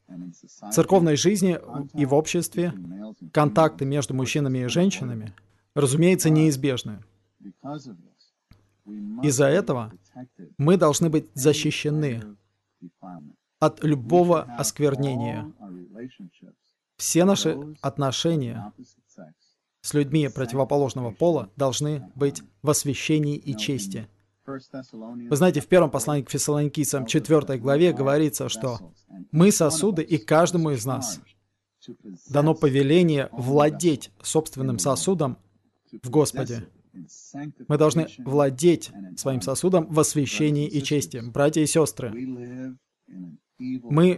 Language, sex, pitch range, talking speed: Russian, male, 120-155 Hz, 100 wpm